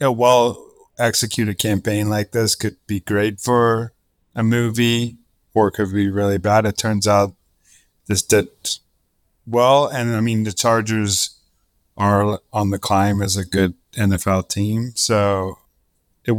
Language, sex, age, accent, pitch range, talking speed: English, male, 40-59, American, 95-115 Hz, 145 wpm